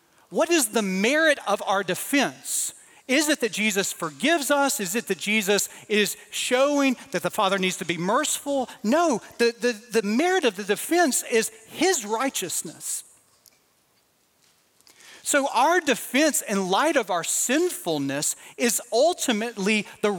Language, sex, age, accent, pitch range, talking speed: English, male, 40-59, American, 190-250 Hz, 140 wpm